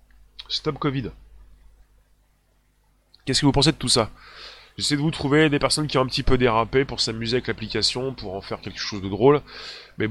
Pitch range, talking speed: 110-155 Hz, 195 wpm